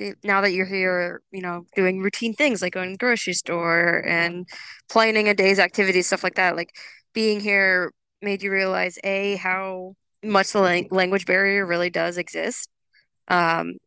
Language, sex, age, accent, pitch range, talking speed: English, female, 20-39, American, 175-195 Hz, 170 wpm